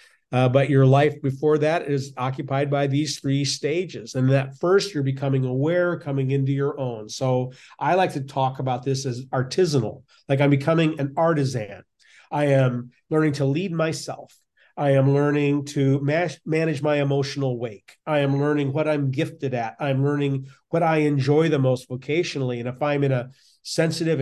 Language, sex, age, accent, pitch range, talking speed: English, male, 40-59, American, 135-160 Hz, 175 wpm